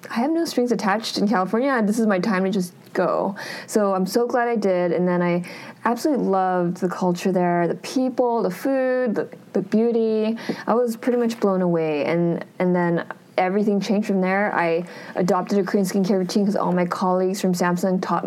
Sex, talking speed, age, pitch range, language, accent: female, 200 wpm, 20-39, 180-230 Hz, English, American